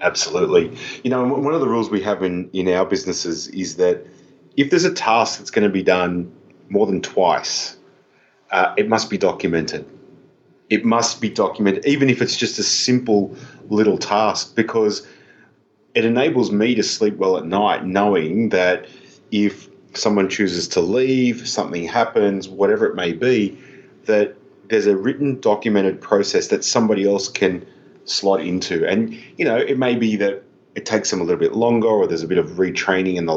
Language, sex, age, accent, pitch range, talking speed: English, male, 30-49, Australian, 95-125 Hz, 180 wpm